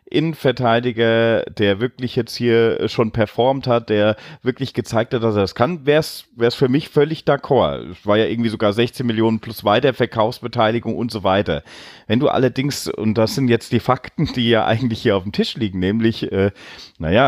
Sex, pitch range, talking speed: male, 100-125 Hz, 190 wpm